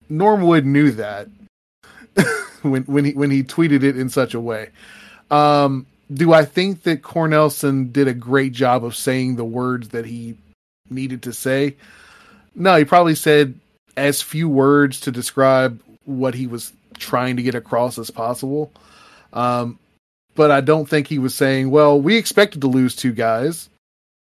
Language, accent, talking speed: English, American, 165 wpm